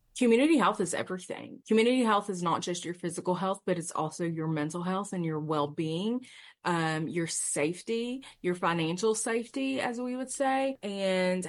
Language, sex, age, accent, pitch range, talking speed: English, female, 30-49, American, 160-210 Hz, 165 wpm